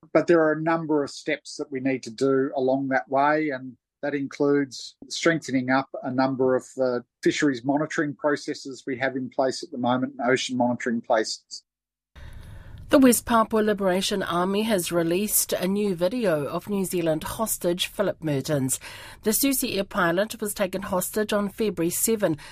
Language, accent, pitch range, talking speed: English, Australian, 145-205 Hz, 170 wpm